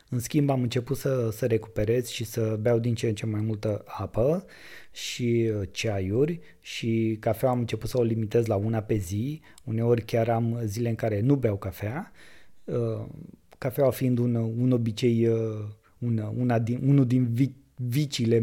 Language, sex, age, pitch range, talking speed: Romanian, male, 20-39, 110-125 Hz, 175 wpm